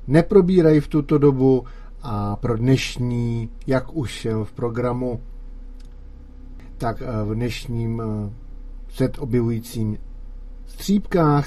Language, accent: Czech, native